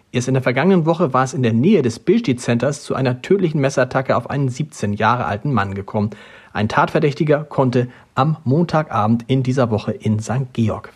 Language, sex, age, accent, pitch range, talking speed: German, male, 40-59, German, 125-155 Hz, 190 wpm